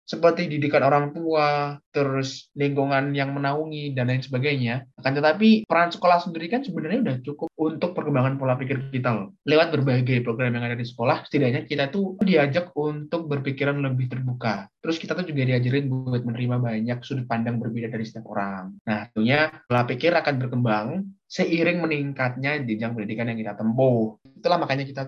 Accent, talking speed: native, 165 wpm